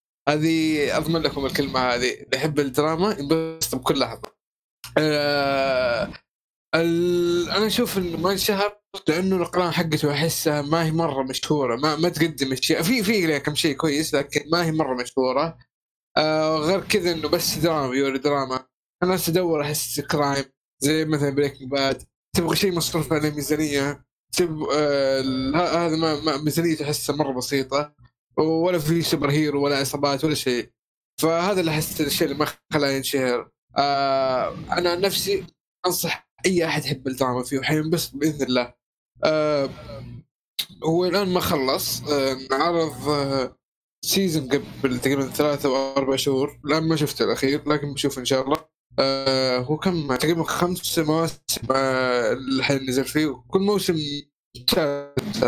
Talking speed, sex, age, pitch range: 145 wpm, male, 20-39, 135-165 Hz